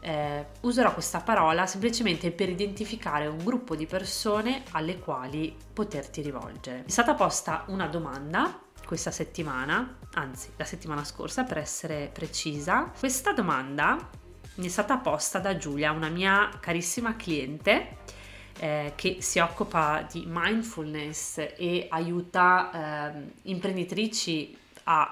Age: 30-49